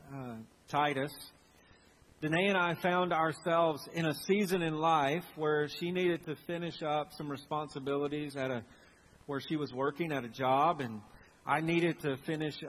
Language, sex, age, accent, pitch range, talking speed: English, male, 40-59, American, 130-160 Hz, 160 wpm